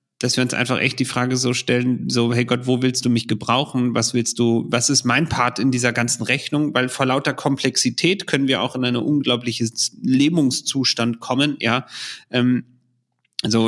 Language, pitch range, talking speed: German, 110-130 Hz, 185 wpm